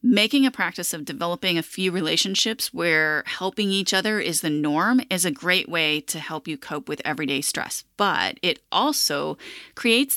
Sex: female